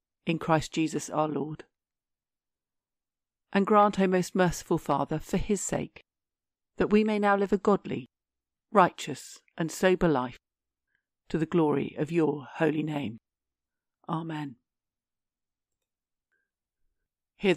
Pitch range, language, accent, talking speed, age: 140-180 Hz, English, British, 115 wpm, 50-69